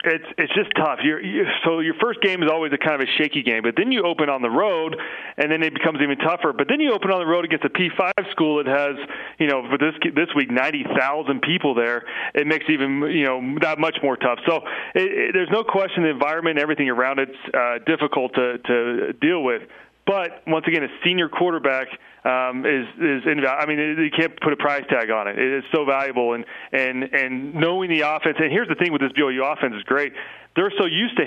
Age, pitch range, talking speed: 30-49, 135-160 Hz, 240 wpm